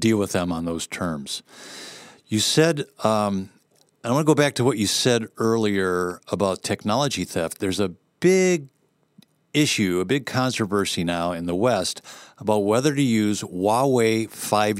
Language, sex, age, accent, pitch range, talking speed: English, male, 50-69, American, 100-120 Hz, 155 wpm